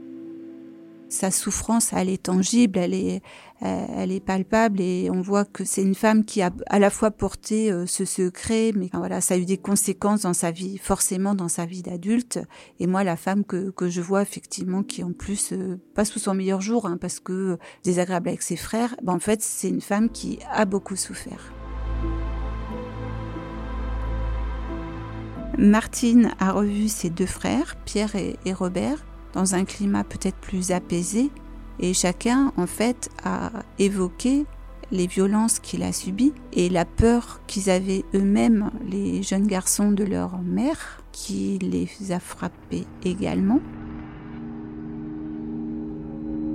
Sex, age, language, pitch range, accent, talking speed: female, 40-59, French, 150-210 Hz, French, 150 wpm